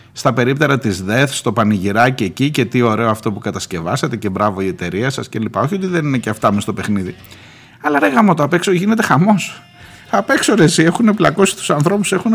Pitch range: 115-175 Hz